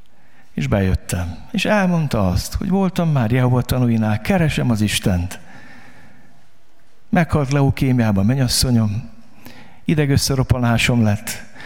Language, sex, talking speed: Hungarian, male, 95 wpm